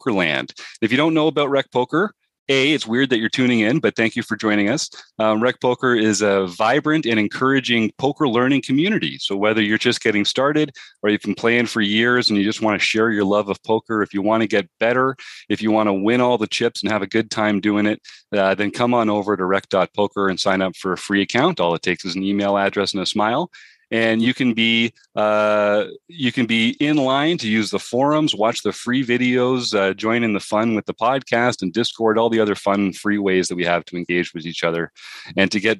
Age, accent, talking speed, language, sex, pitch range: 40-59, American, 240 wpm, English, male, 100-120 Hz